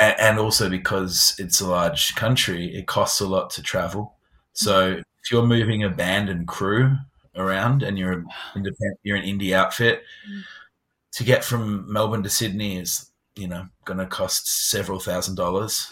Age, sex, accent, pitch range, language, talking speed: 20-39, male, Australian, 90-110 Hz, English, 170 wpm